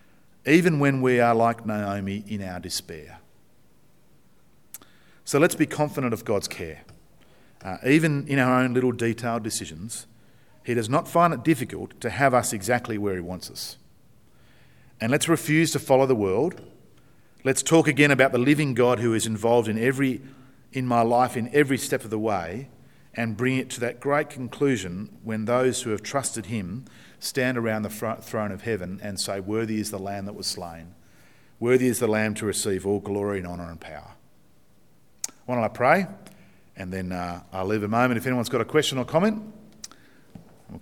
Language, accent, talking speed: English, Australian, 185 wpm